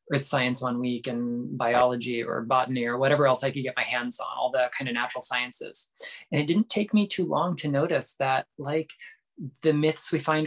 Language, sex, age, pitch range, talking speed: English, male, 20-39, 125-145 Hz, 220 wpm